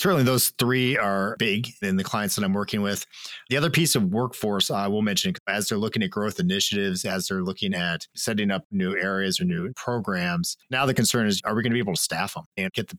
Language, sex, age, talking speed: English, male, 40-59, 245 wpm